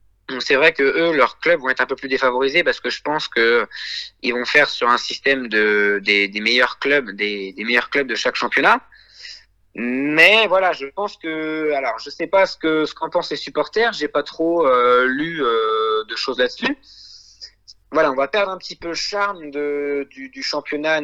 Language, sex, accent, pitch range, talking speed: French, male, French, 125-170 Hz, 205 wpm